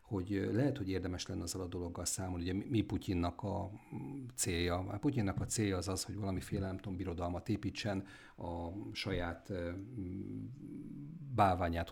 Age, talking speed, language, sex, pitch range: 50-69, 145 wpm, Hungarian, male, 90-105 Hz